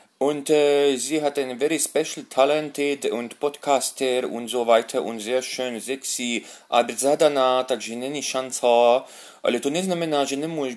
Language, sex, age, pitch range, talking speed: Slovak, male, 30-49, 115-140 Hz, 150 wpm